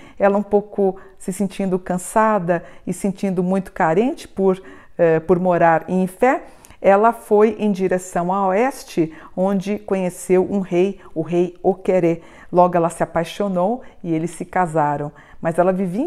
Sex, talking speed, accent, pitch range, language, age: female, 150 wpm, Brazilian, 180-225 Hz, Portuguese, 50-69